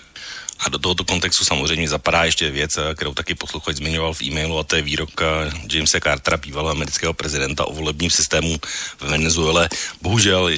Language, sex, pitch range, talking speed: Slovak, male, 75-80 Hz, 165 wpm